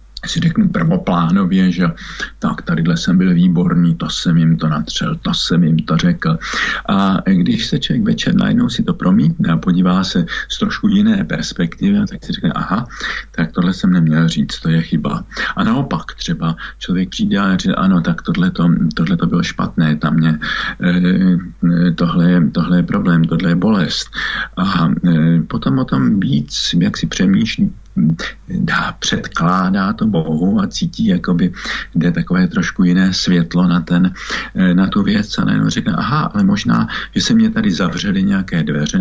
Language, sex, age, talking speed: Slovak, male, 50-69, 170 wpm